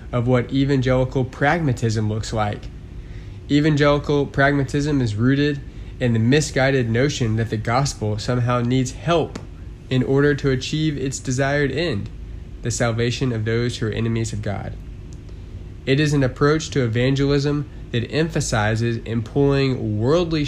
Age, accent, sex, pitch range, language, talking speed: 20-39, American, male, 110-135 Hz, English, 135 wpm